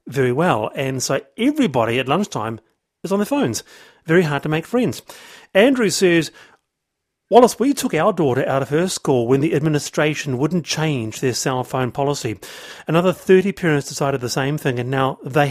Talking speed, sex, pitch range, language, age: 180 wpm, male, 135-190 Hz, English, 40-59